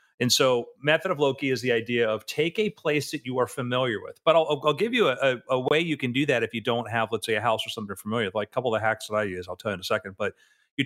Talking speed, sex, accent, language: 330 wpm, male, American, English